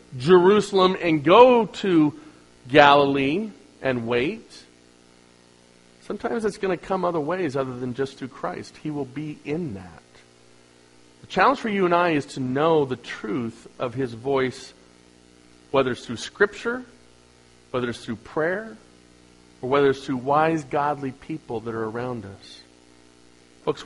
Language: English